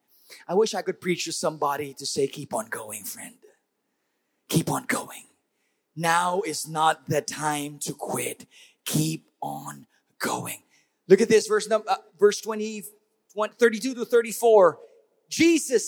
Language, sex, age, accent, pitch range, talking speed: English, male, 30-49, American, 190-275 Hz, 145 wpm